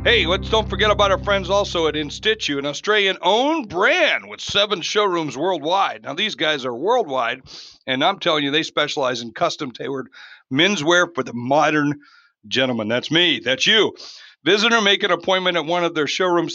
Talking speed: 175 wpm